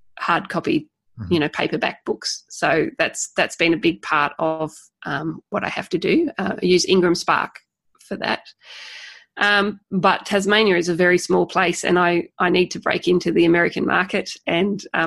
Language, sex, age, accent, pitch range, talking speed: English, female, 20-39, Australian, 175-200 Hz, 185 wpm